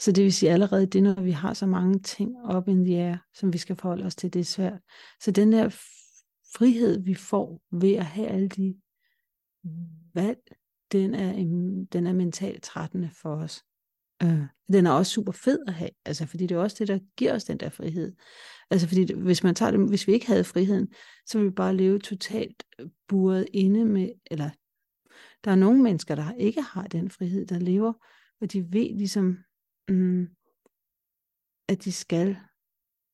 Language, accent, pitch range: Danish, native, 175-200 Hz